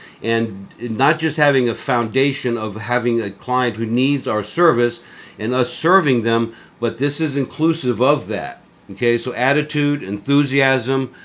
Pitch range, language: 115-140 Hz, English